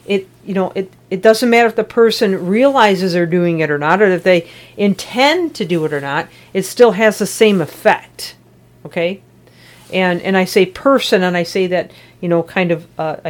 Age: 50-69